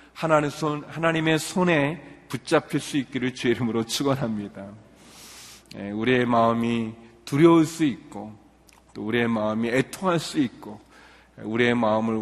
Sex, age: male, 40-59